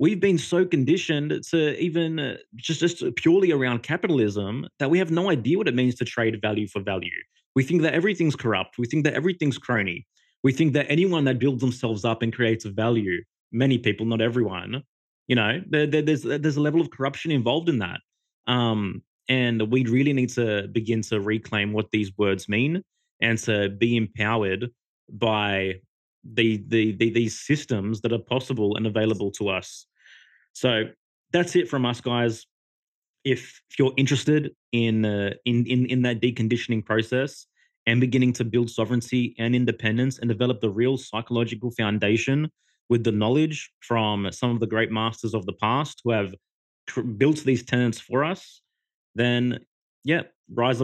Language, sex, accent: English, male, Australian